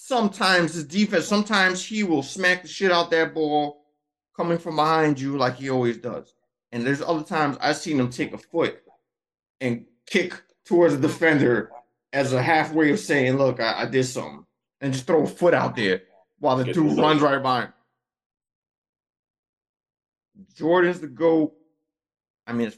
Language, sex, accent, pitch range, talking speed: English, male, American, 125-175 Hz, 170 wpm